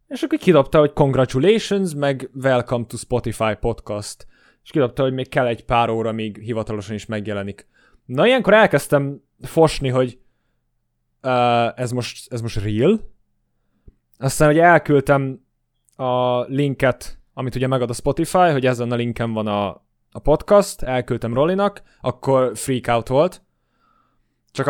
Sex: male